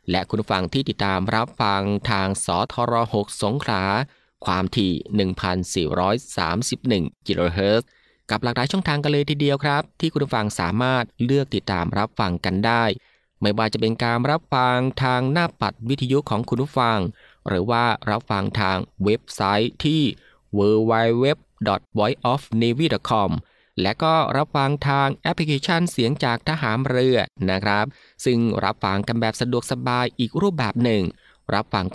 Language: Thai